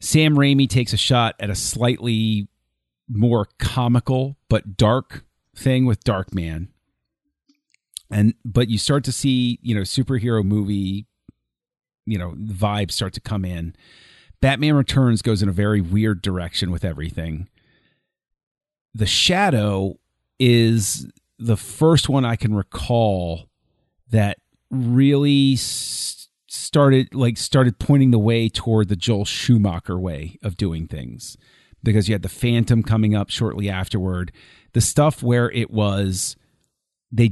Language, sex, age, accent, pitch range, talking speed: English, male, 40-59, American, 100-125 Hz, 135 wpm